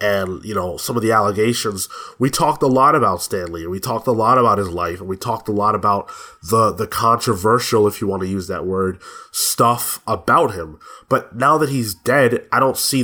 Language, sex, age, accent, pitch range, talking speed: English, male, 20-39, American, 110-140 Hz, 220 wpm